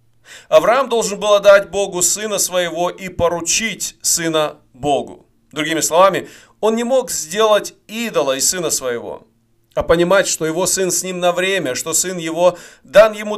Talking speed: 155 wpm